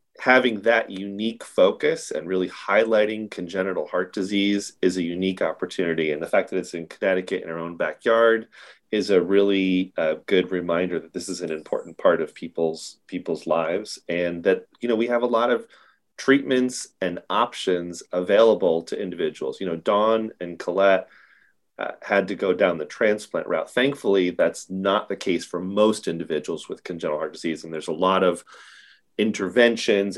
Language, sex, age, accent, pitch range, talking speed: English, male, 30-49, American, 95-120 Hz, 175 wpm